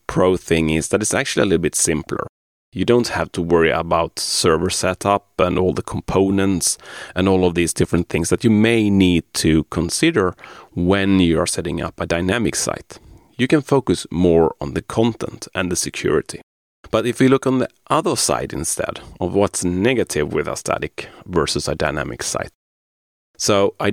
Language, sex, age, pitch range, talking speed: English, male, 30-49, 80-100 Hz, 180 wpm